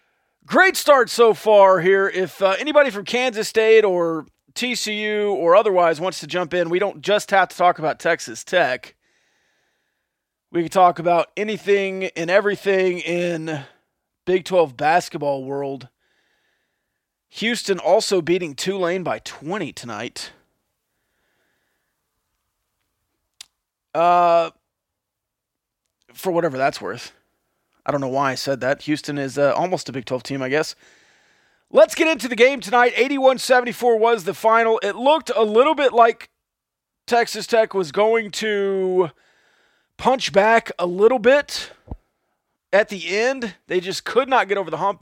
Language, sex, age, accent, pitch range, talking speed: English, male, 30-49, American, 170-225 Hz, 140 wpm